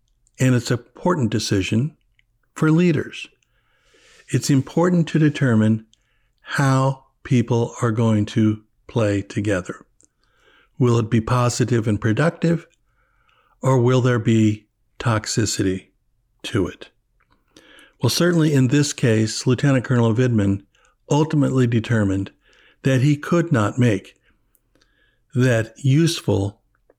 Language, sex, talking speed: English, male, 105 wpm